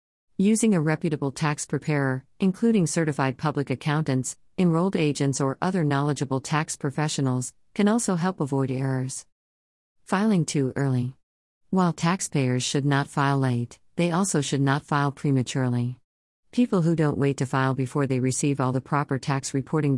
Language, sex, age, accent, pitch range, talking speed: English, female, 50-69, American, 130-160 Hz, 150 wpm